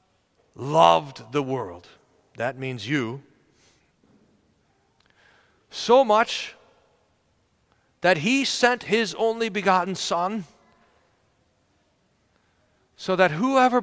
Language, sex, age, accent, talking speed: English, male, 40-59, American, 80 wpm